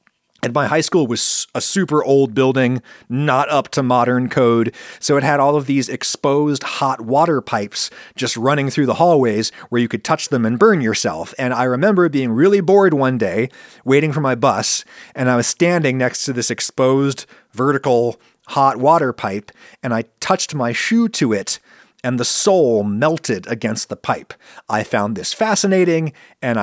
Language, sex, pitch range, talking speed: English, male, 120-155 Hz, 180 wpm